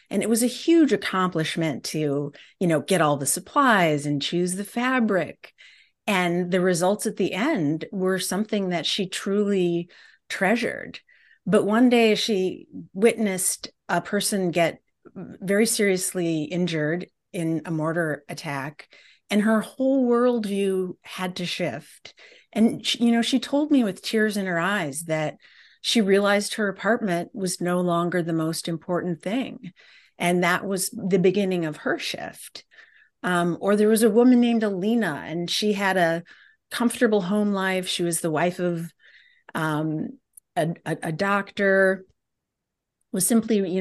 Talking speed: 150 wpm